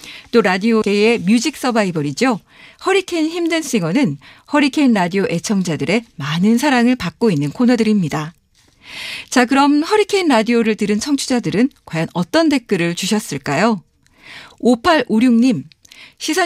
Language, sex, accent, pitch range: Korean, female, native, 200-275 Hz